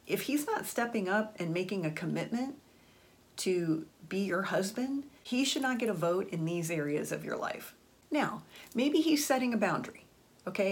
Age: 40-59